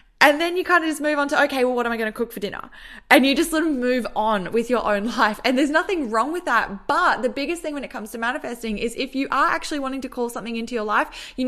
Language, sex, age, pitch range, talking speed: English, female, 10-29, 220-275 Hz, 305 wpm